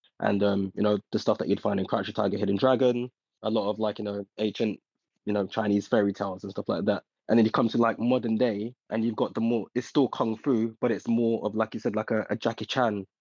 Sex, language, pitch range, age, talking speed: male, English, 110-130 Hz, 20-39, 270 wpm